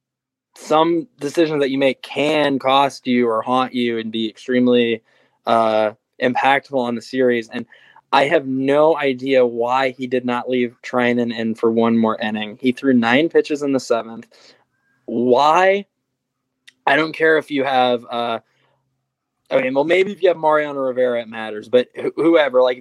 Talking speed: 170 wpm